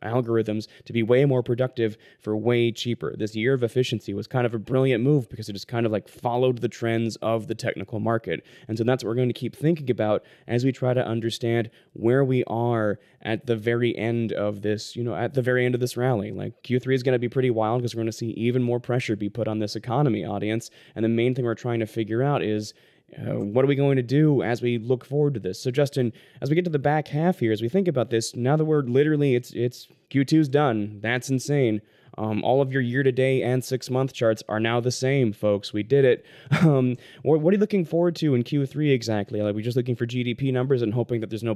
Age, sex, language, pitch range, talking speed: 20-39, male, English, 110-130 Hz, 250 wpm